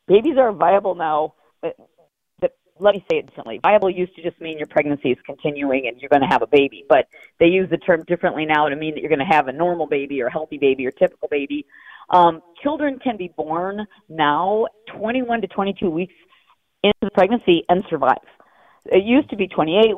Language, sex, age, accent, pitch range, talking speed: English, female, 40-59, American, 165-215 Hz, 215 wpm